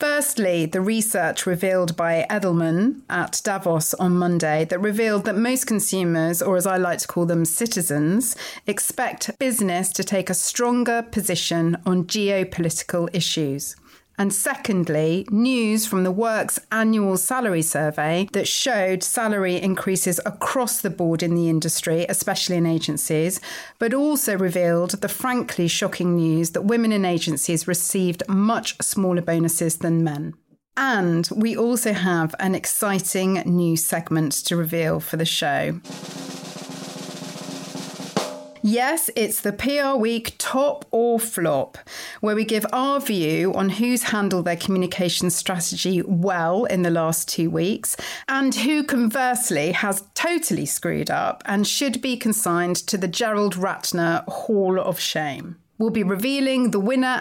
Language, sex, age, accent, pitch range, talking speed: English, female, 40-59, British, 170-220 Hz, 140 wpm